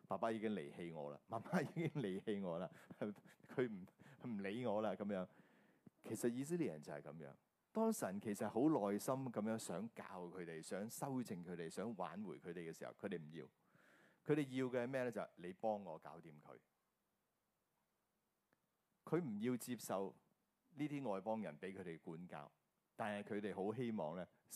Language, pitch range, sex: Chinese, 95-140 Hz, male